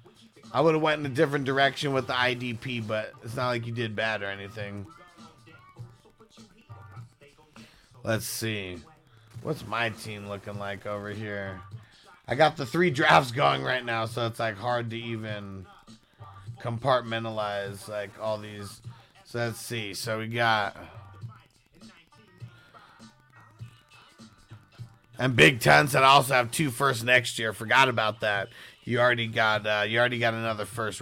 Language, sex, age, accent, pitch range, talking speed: English, male, 40-59, American, 115-155 Hz, 145 wpm